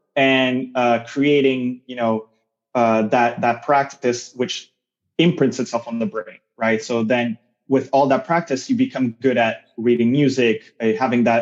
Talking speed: 165 wpm